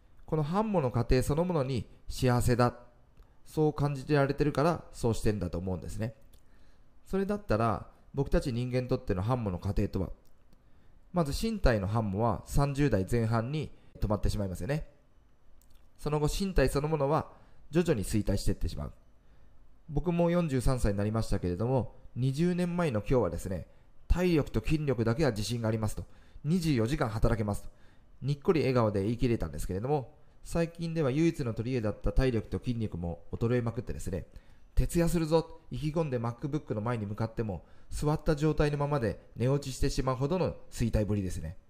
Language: Japanese